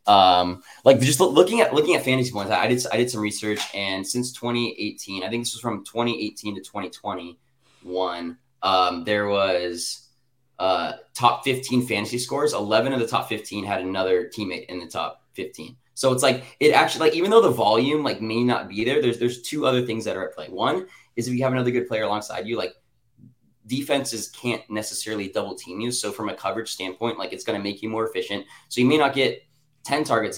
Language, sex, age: English, male, 20-39